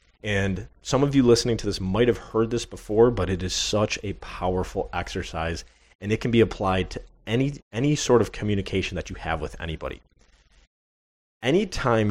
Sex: male